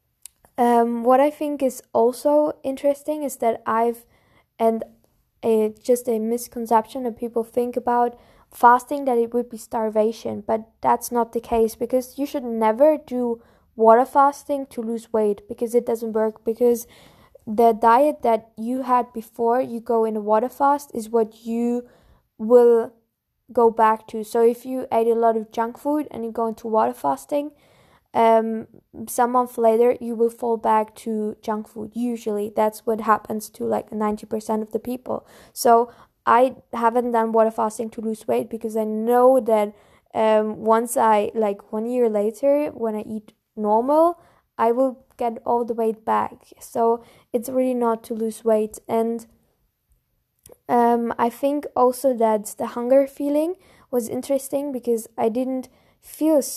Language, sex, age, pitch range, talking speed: English, female, 10-29, 225-250 Hz, 160 wpm